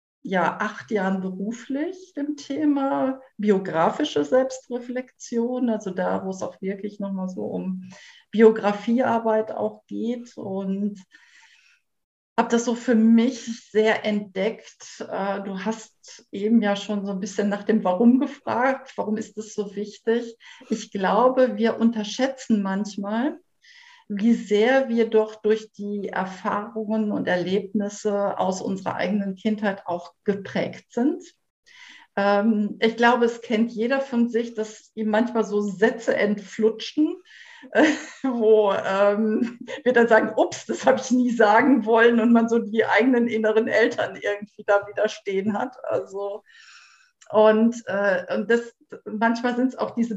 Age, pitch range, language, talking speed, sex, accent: 50-69, 205-235 Hz, German, 140 wpm, female, German